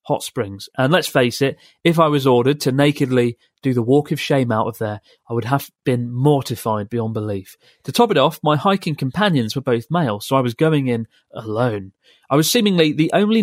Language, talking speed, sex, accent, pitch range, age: English, 215 wpm, male, British, 120-155 Hz, 30-49